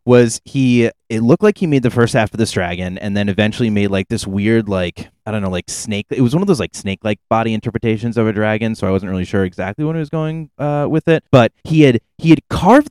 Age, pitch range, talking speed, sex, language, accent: 20-39, 105-145 Hz, 265 wpm, male, English, American